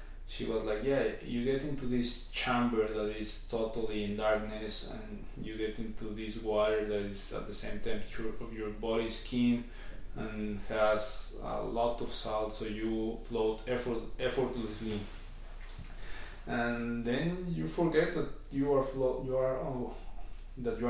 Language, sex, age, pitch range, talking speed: English, male, 20-39, 105-120 Hz, 155 wpm